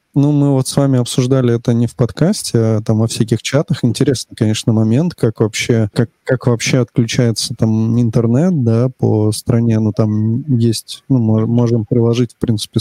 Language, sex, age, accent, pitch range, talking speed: Russian, male, 20-39, native, 115-130 Hz, 180 wpm